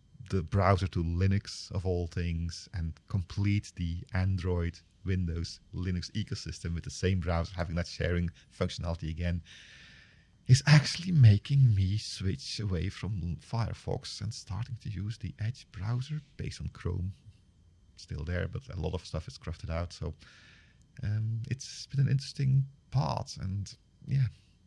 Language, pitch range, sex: English, 90-115 Hz, male